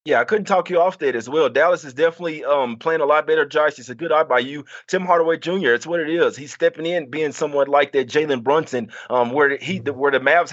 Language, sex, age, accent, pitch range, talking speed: English, male, 30-49, American, 125-165 Hz, 270 wpm